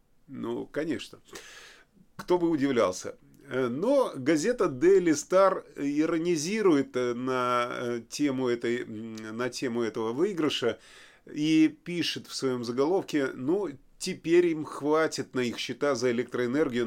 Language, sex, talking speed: Russian, male, 100 wpm